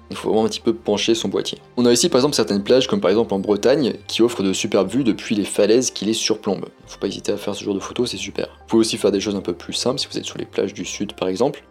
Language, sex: French, male